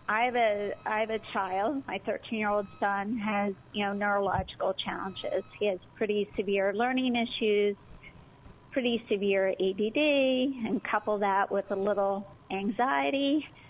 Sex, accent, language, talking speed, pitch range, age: female, American, English, 145 wpm, 200-245 Hz, 40-59